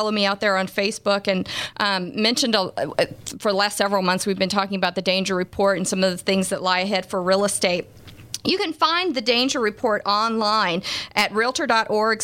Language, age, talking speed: English, 40-59, 205 wpm